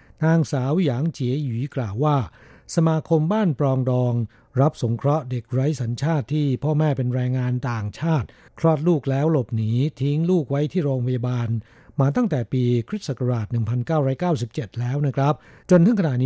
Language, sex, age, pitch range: Thai, male, 60-79, 125-155 Hz